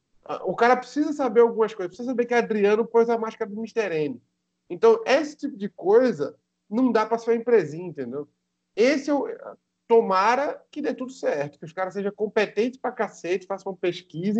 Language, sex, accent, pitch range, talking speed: Portuguese, male, Brazilian, 170-230 Hz, 185 wpm